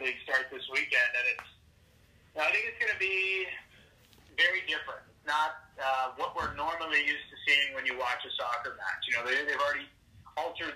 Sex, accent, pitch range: male, American, 130-150 Hz